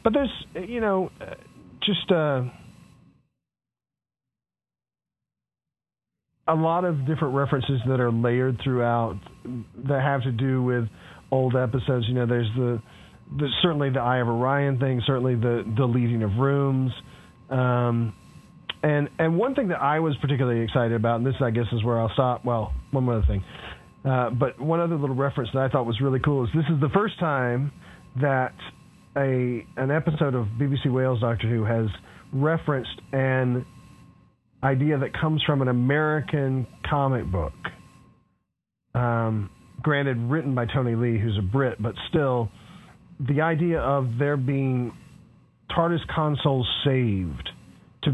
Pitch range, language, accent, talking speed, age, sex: 115-140 Hz, English, American, 150 wpm, 40-59, male